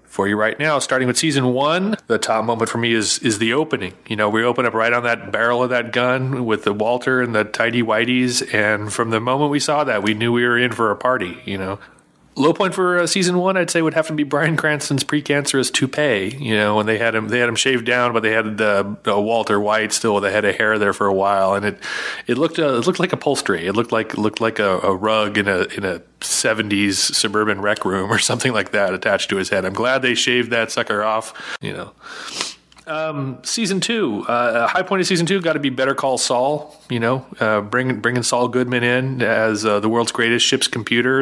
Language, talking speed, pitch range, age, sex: English, 245 wpm, 110-135 Hz, 30-49, male